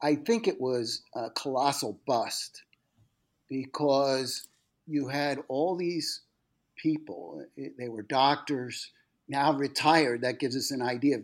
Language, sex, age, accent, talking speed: English, male, 50-69, American, 130 wpm